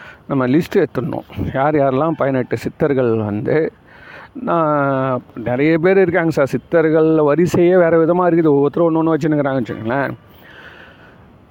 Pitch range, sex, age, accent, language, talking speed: 135-165 Hz, male, 40-59, native, Tamil, 115 wpm